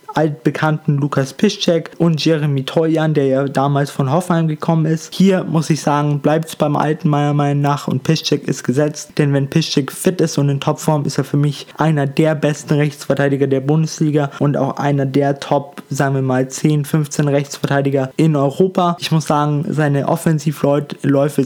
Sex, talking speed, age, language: male, 175 wpm, 20-39, German